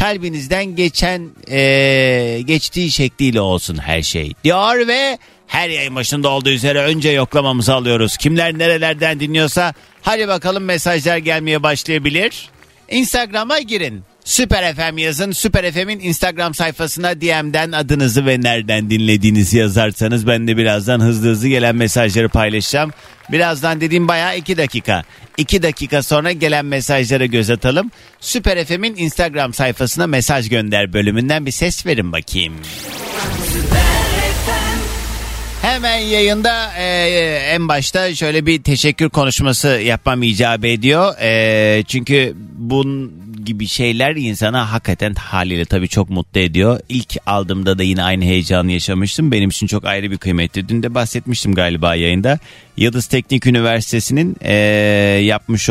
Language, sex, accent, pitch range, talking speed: Turkish, male, native, 105-155 Hz, 125 wpm